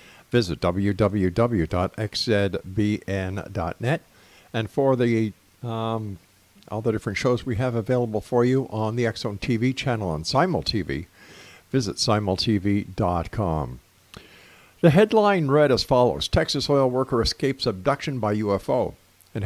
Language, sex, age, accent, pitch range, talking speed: English, male, 50-69, American, 105-140 Hz, 115 wpm